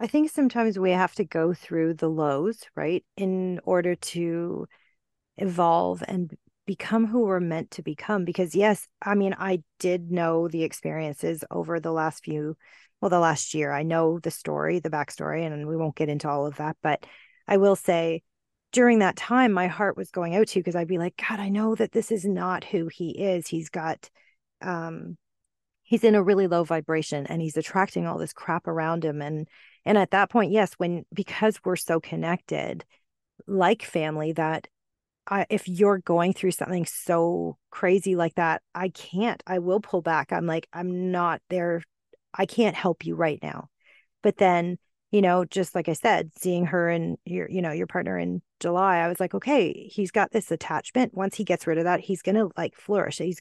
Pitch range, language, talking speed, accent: 165-200 Hz, English, 195 wpm, American